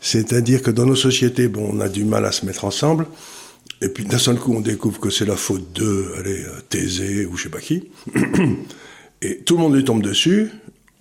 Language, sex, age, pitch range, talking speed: French, male, 50-69, 100-140 Hz, 220 wpm